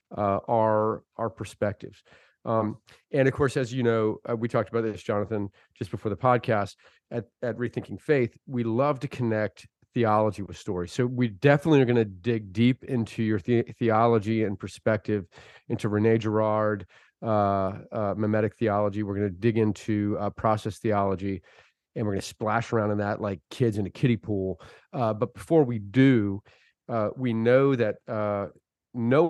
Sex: male